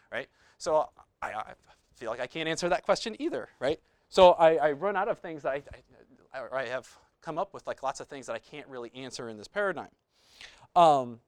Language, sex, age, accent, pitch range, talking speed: English, male, 30-49, American, 130-160 Hz, 205 wpm